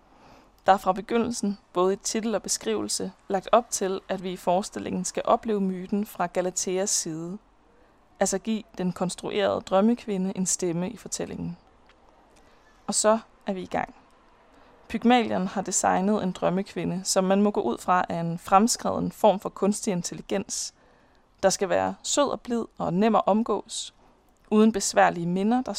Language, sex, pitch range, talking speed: Danish, female, 180-215 Hz, 160 wpm